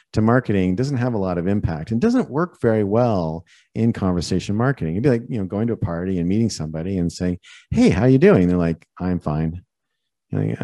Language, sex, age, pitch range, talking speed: English, male, 40-59, 85-115 Hz, 220 wpm